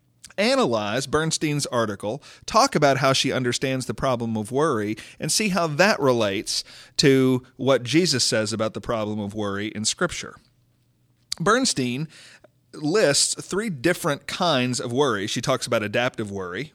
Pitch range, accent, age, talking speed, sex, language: 115-150 Hz, American, 40-59, 145 wpm, male, English